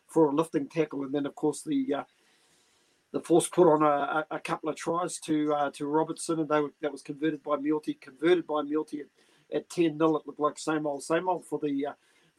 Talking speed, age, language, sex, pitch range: 230 wpm, 40-59, English, male, 145-160 Hz